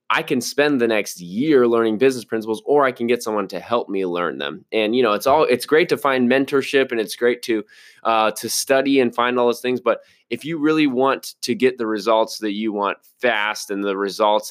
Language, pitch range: English, 105-120 Hz